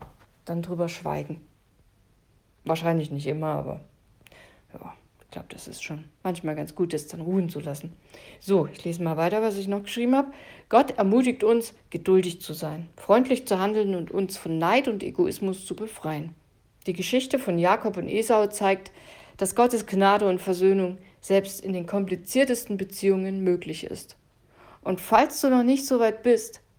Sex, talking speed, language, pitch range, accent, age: female, 165 wpm, German, 160-215 Hz, German, 50-69